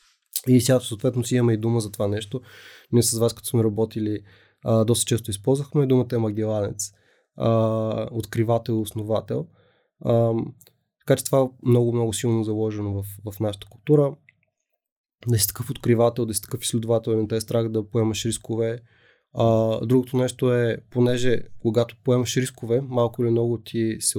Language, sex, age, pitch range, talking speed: Bulgarian, male, 20-39, 110-120 Hz, 160 wpm